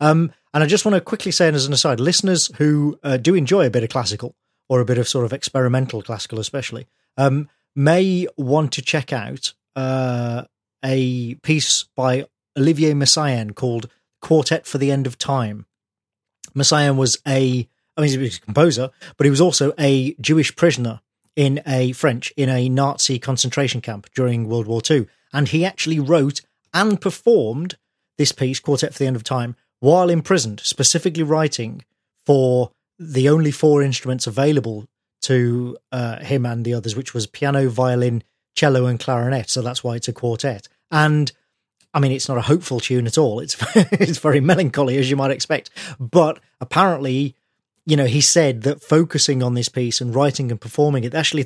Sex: male